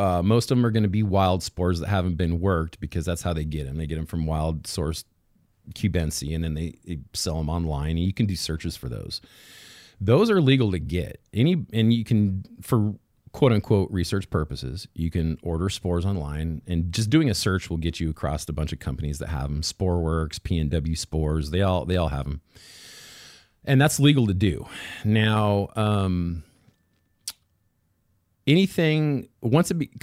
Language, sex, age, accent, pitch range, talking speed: English, male, 40-59, American, 80-105 Hz, 190 wpm